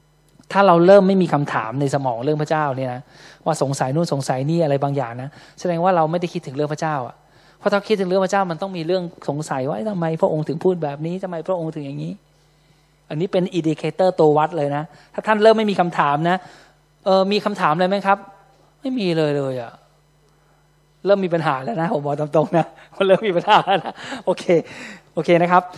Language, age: Thai, 20-39